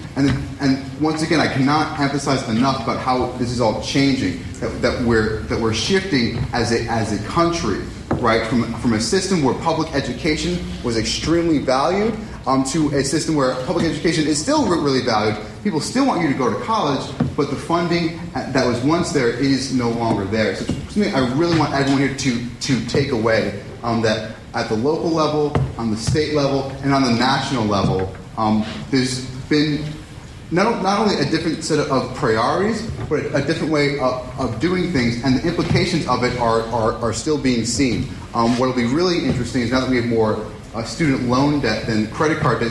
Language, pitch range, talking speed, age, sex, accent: English, 115-150 Hz, 200 wpm, 30-49, male, American